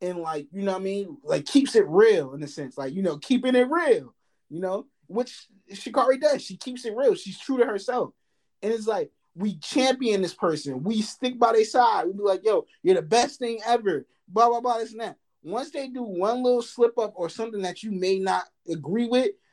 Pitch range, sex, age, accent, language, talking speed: 165-235 Hz, male, 20-39, American, English, 225 wpm